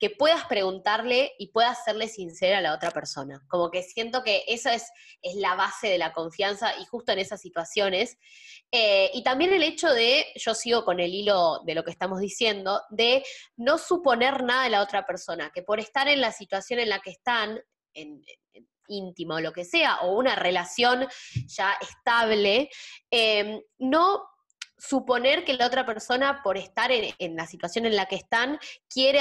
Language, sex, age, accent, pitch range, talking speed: Spanish, female, 20-39, Argentinian, 180-255 Hz, 185 wpm